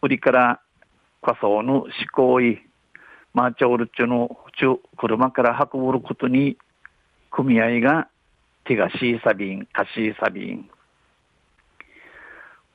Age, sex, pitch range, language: 50-69, male, 120-140 Hz, Japanese